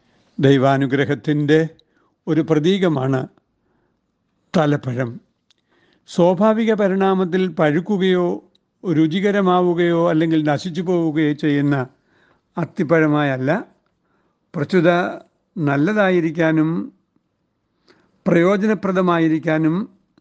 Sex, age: male, 60-79